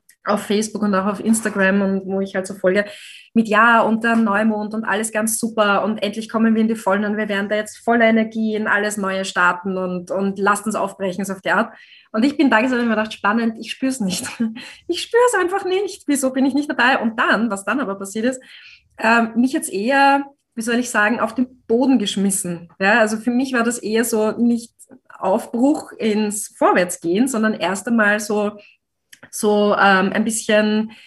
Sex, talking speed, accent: female, 210 wpm, German